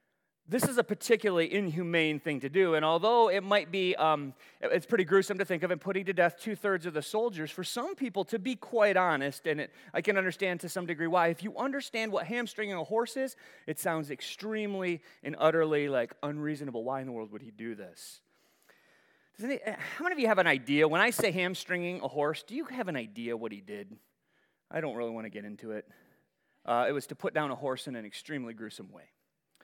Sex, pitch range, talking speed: male, 155-235 Hz, 220 wpm